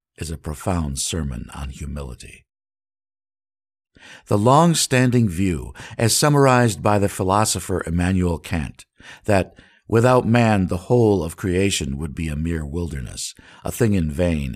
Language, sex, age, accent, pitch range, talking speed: English, male, 50-69, American, 85-115 Hz, 130 wpm